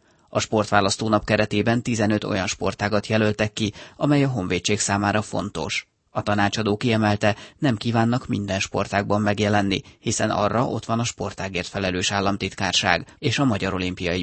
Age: 30-49